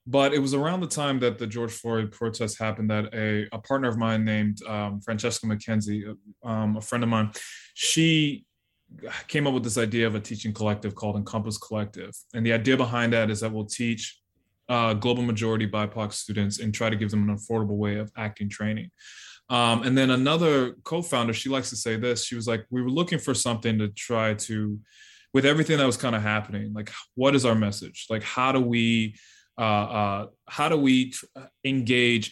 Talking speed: 200 wpm